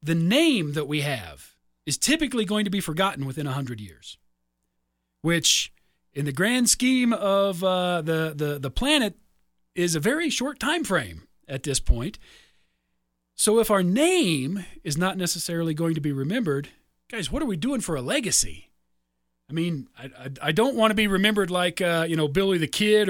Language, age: English, 40-59